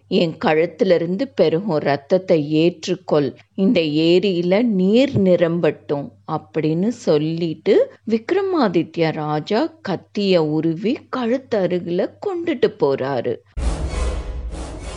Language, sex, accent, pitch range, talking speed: Tamil, female, native, 155-205 Hz, 75 wpm